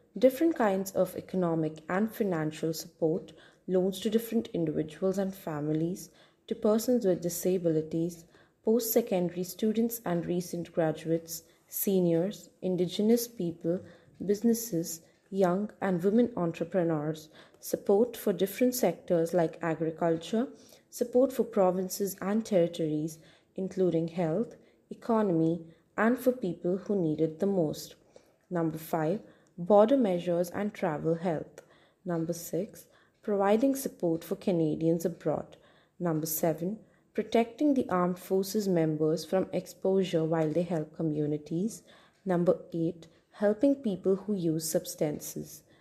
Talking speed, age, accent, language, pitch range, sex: 115 wpm, 20-39, Indian, English, 165-205 Hz, female